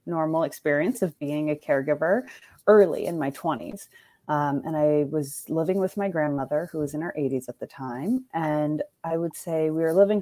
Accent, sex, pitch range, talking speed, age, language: American, female, 145-180 Hz, 190 wpm, 30-49, English